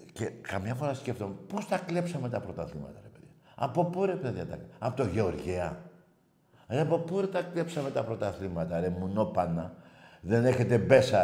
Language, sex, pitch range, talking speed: Greek, male, 125-170 Hz, 170 wpm